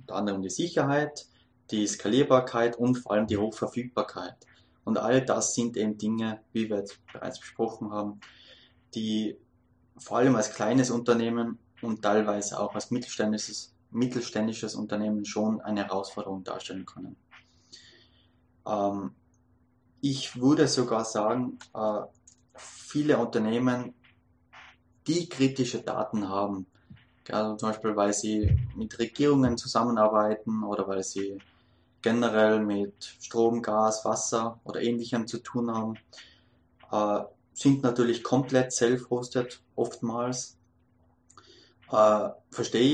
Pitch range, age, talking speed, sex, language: 105-125 Hz, 20-39, 115 wpm, male, English